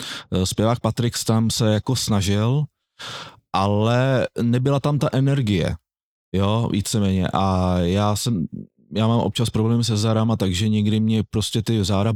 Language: Czech